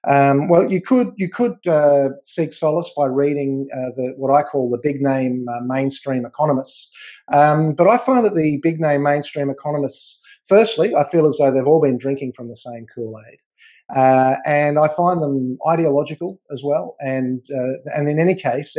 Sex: male